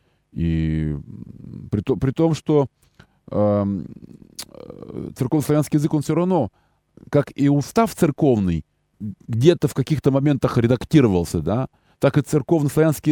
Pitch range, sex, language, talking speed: 95-140 Hz, male, Russian, 115 wpm